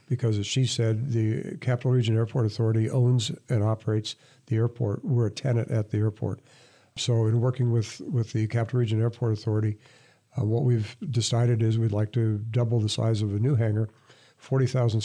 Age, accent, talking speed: 50-69, American, 185 wpm